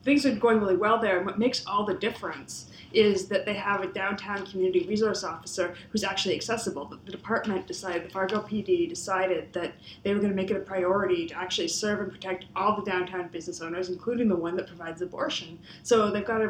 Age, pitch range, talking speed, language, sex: 20-39, 185-220 Hz, 220 wpm, English, female